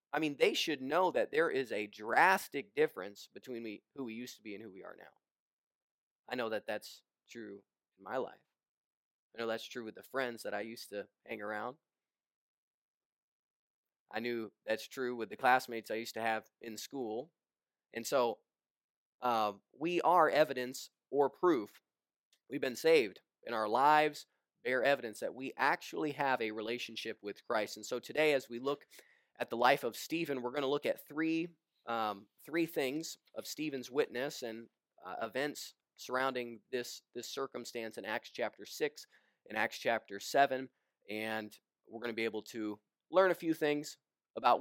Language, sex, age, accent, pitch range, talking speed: English, male, 20-39, American, 115-155 Hz, 175 wpm